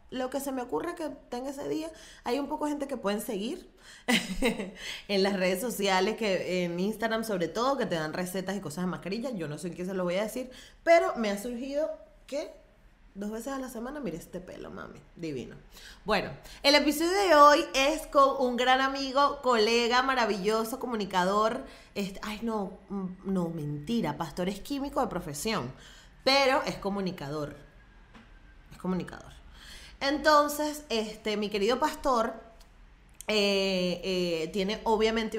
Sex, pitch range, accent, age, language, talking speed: female, 185-245 Hz, American, 30-49, Spanish, 160 wpm